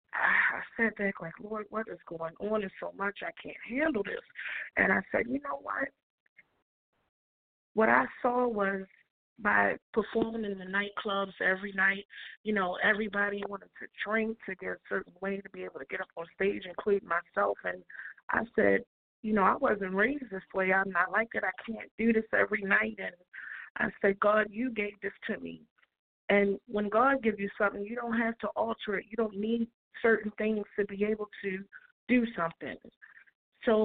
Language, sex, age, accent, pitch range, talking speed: English, female, 30-49, American, 195-225 Hz, 190 wpm